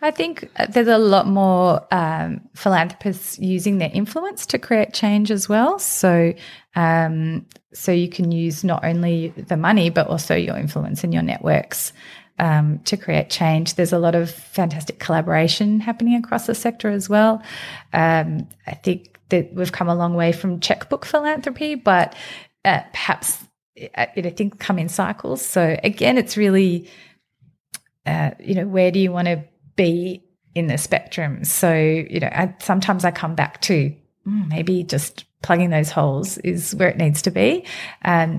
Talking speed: 170 wpm